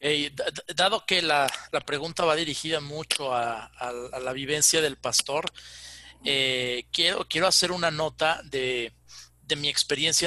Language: Spanish